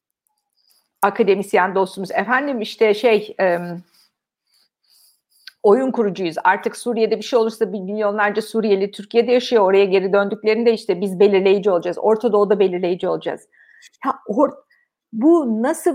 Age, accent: 50-69, native